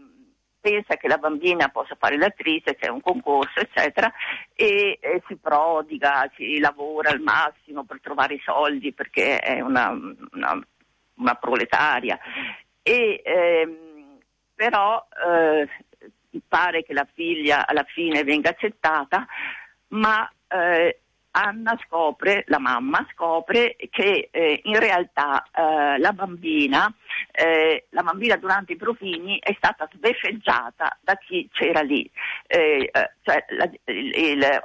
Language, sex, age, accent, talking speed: Italian, female, 50-69, native, 130 wpm